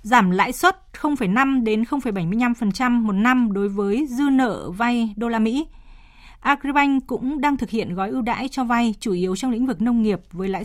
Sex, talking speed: female, 195 wpm